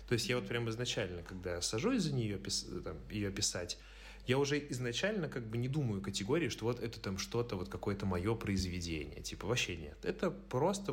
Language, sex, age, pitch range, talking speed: Russian, male, 30-49, 95-125 Hz, 180 wpm